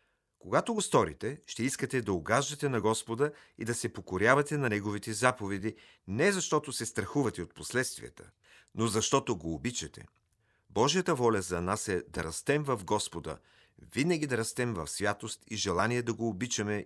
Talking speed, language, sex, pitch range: 160 wpm, Bulgarian, male, 95-130 Hz